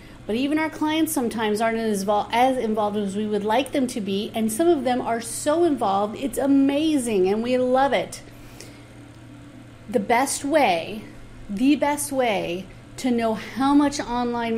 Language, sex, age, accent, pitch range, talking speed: English, female, 40-59, American, 195-255 Hz, 160 wpm